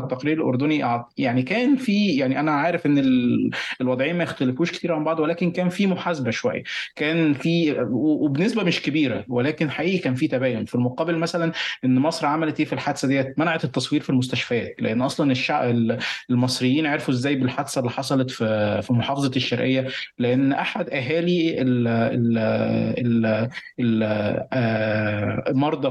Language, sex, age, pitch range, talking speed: Arabic, male, 20-39, 125-160 Hz, 140 wpm